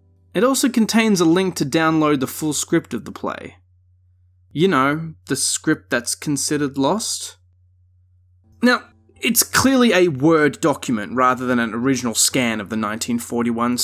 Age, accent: 20-39, Australian